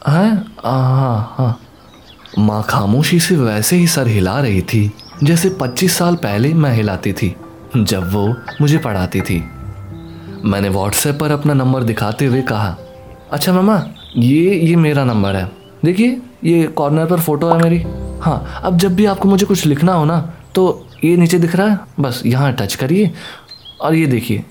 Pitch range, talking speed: 105-170 Hz, 170 wpm